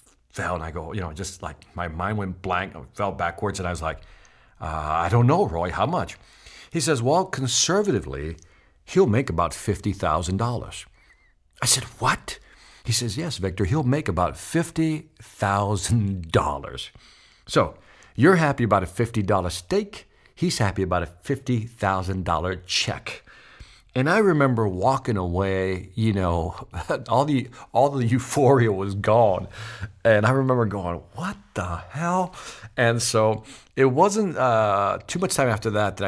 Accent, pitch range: American, 95-130 Hz